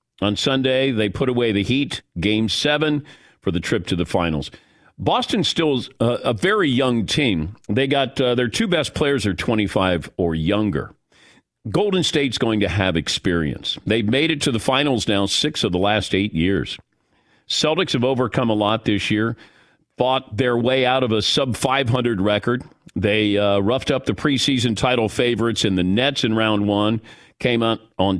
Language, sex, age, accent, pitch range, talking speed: English, male, 50-69, American, 110-135 Hz, 180 wpm